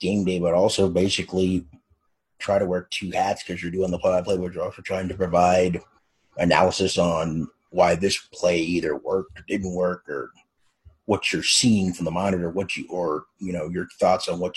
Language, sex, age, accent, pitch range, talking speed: English, male, 30-49, American, 90-100 Hz, 195 wpm